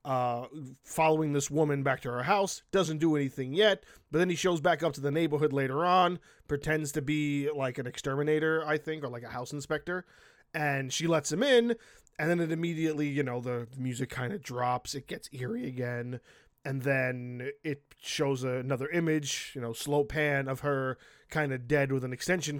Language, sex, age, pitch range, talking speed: English, male, 20-39, 135-170 Hz, 195 wpm